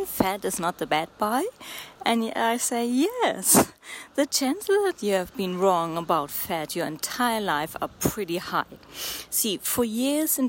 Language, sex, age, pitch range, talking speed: English, female, 30-49, 185-250 Hz, 165 wpm